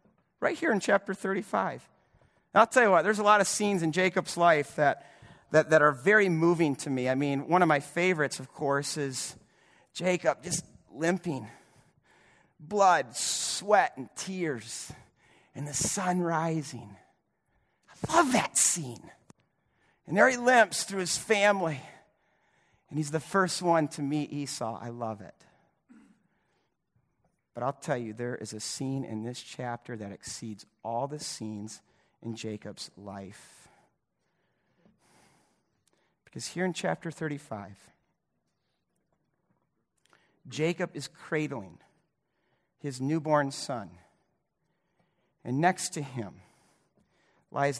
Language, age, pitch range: English, 40-59, 125-175 Hz